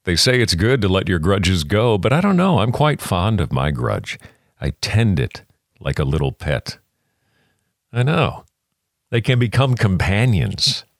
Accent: American